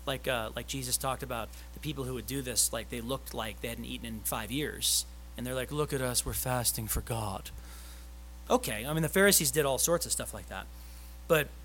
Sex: male